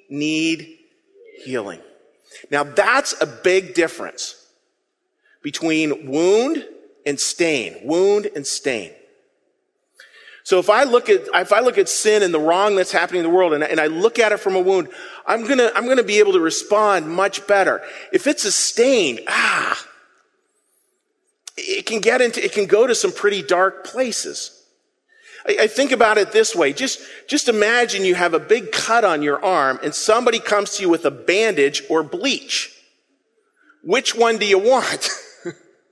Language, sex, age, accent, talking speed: English, male, 40-59, American, 165 wpm